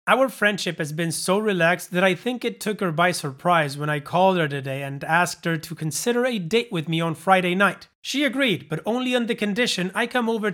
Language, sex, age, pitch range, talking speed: English, male, 30-49, 165-210 Hz, 235 wpm